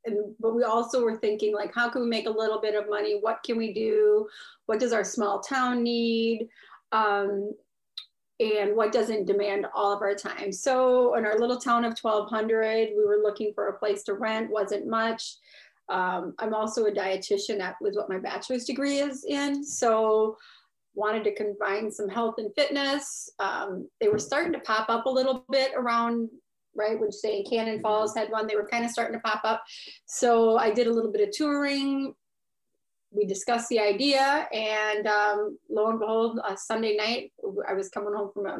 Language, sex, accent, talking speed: English, female, American, 195 wpm